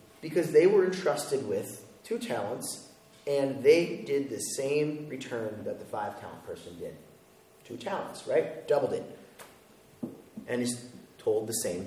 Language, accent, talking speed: English, American, 140 wpm